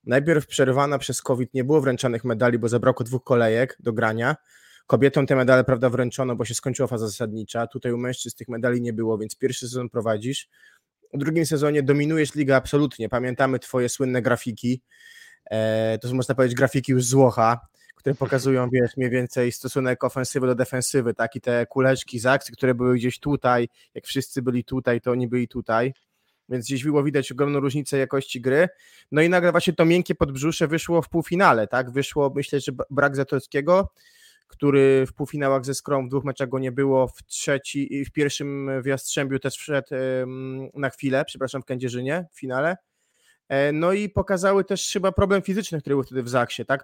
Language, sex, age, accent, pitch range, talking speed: Polish, male, 20-39, native, 125-145 Hz, 180 wpm